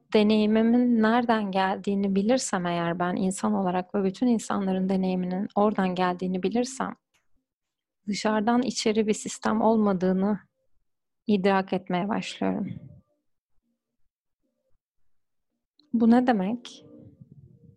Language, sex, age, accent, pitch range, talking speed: Turkish, female, 30-49, native, 190-225 Hz, 90 wpm